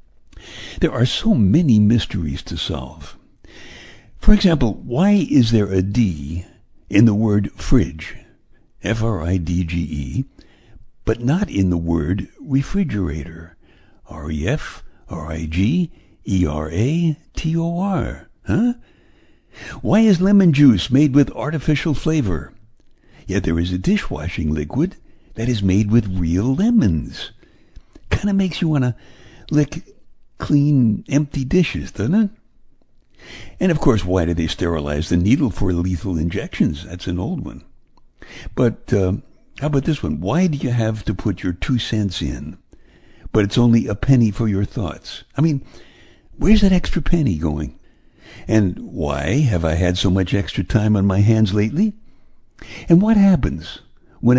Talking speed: 135 wpm